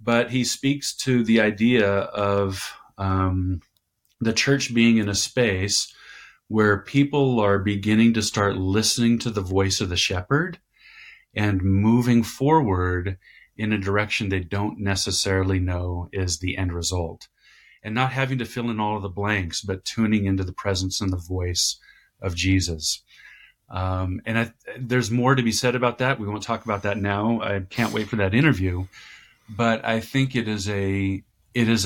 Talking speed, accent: 170 wpm, American